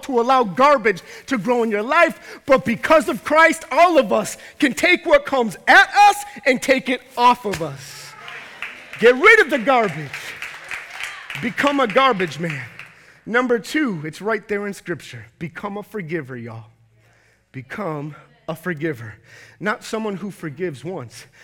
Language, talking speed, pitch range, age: English, 155 wpm, 160-240 Hz, 30-49